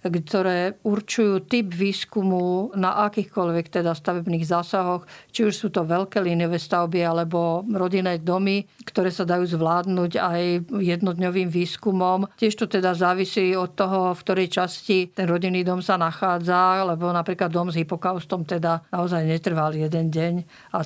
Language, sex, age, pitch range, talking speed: Slovak, female, 50-69, 175-195 Hz, 145 wpm